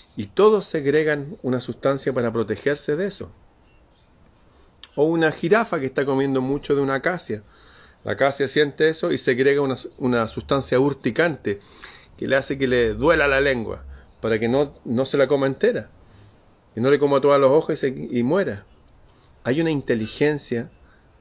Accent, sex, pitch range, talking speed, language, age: Argentinian, male, 115-155 Hz, 165 wpm, Spanish, 40-59